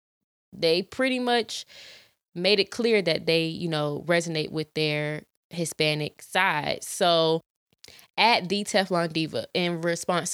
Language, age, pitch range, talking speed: English, 20-39, 150-175 Hz, 130 wpm